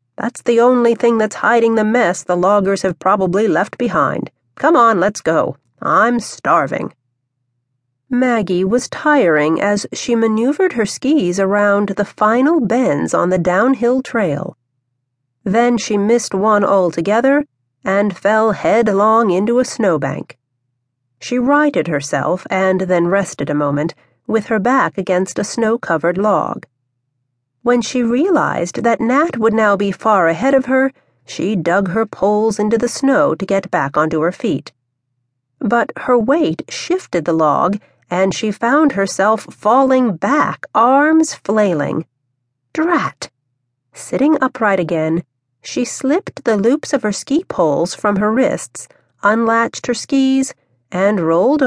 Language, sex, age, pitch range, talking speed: English, female, 40-59, 160-245 Hz, 140 wpm